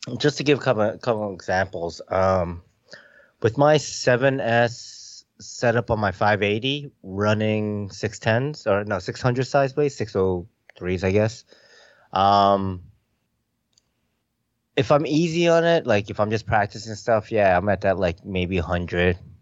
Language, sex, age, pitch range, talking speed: English, male, 20-39, 100-125 Hz, 140 wpm